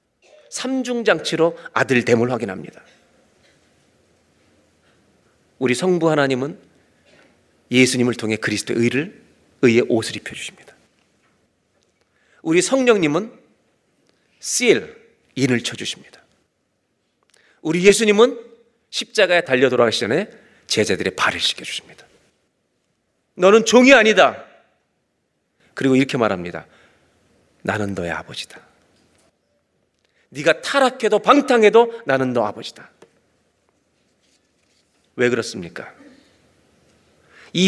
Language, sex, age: Korean, male, 40-59